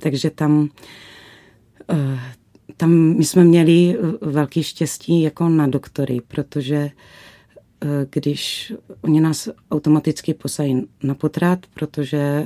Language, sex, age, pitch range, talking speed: Czech, female, 30-49, 130-150 Hz, 95 wpm